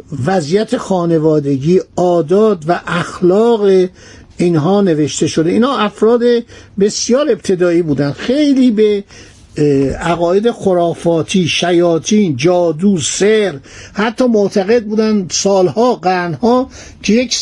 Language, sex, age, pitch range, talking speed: Persian, male, 60-79, 160-210 Hz, 95 wpm